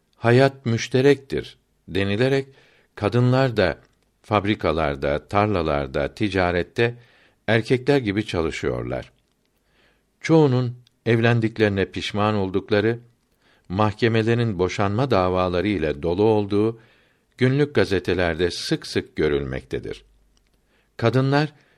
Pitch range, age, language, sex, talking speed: 95-120 Hz, 60-79, Turkish, male, 75 wpm